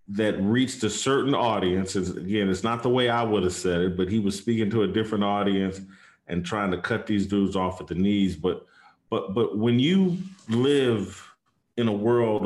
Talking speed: 200 wpm